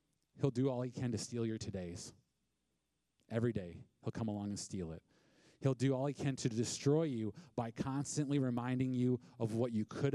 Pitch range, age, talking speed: 115-155 Hz, 40-59, 195 wpm